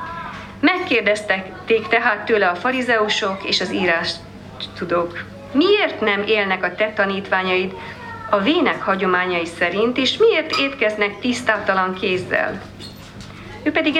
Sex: female